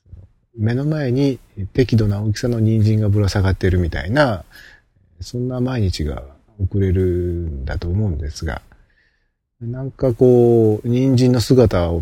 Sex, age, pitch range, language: male, 40-59, 85-120 Hz, Japanese